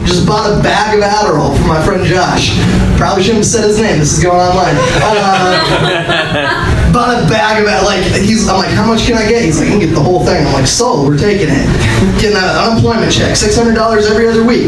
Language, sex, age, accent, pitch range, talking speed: English, male, 20-39, American, 145-205 Hz, 230 wpm